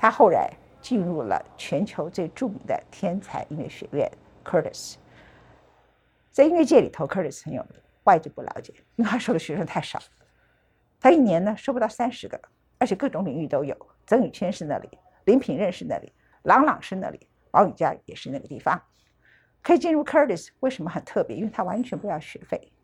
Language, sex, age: Chinese, female, 50-69